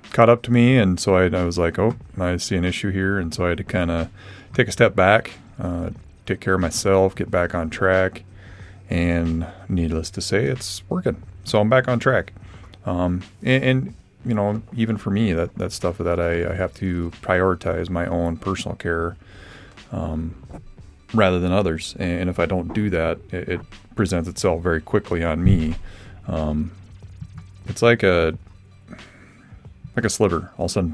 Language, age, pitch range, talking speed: English, 30-49, 85-100 Hz, 190 wpm